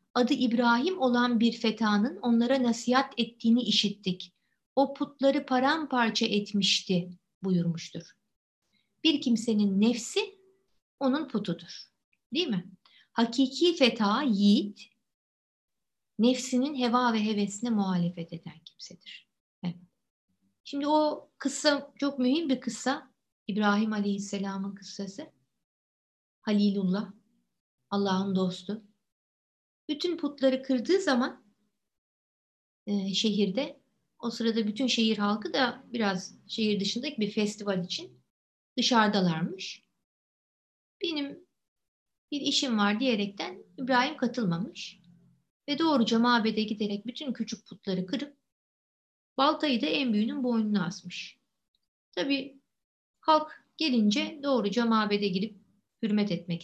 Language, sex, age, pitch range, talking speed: Turkish, female, 50-69, 200-265 Hz, 100 wpm